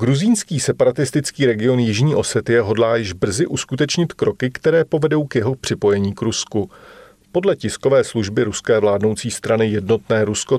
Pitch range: 105-135 Hz